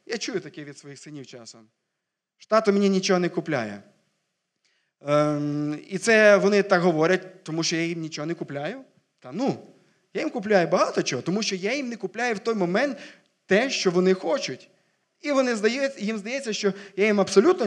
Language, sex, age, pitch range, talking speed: Ukrainian, male, 20-39, 145-195 Hz, 185 wpm